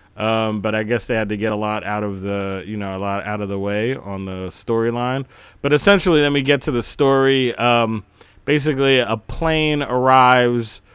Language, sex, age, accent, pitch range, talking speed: English, male, 30-49, American, 105-130 Hz, 205 wpm